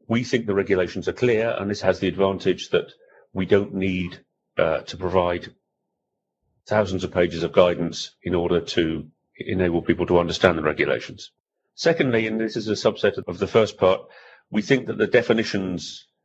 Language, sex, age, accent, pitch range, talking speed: English, male, 40-59, British, 90-110 Hz, 175 wpm